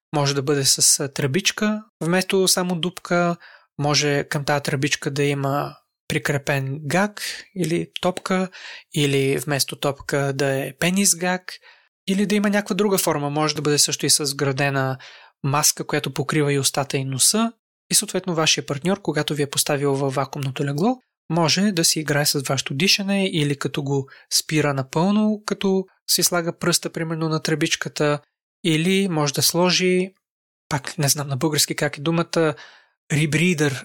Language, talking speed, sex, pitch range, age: Bulgarian, 155 wpm, male, 145-180 Hz, 20-39